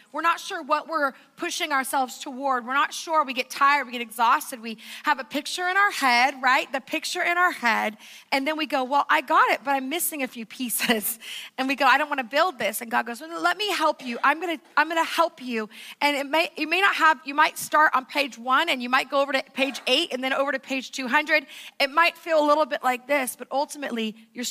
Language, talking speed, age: English, 260 wpm, 30-49